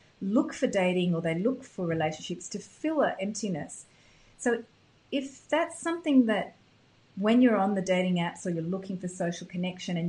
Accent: Australian